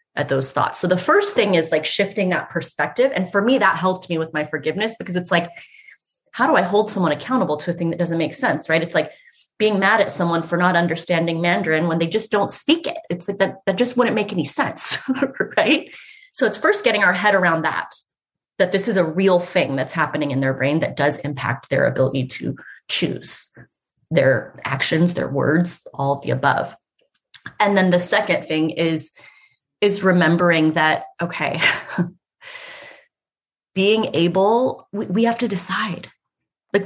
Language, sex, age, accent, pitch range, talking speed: English, female, 30-49, American, 155-195 Hz, 185 wpm